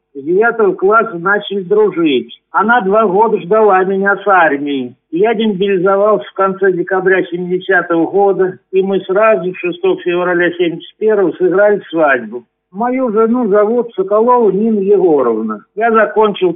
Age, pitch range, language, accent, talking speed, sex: 50-69, 180-215 Hz, Russian, native, 125 wpm, male